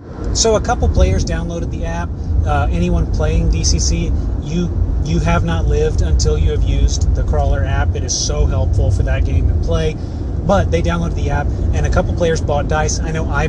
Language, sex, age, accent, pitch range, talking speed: English, male, 30-49, American, 75-90 Hz, 205 wpm